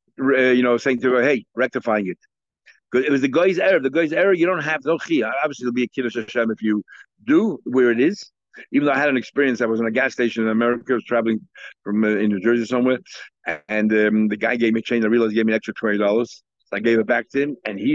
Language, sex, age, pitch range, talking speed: English, male, 60-79, 120-175 Hz, 280 wpm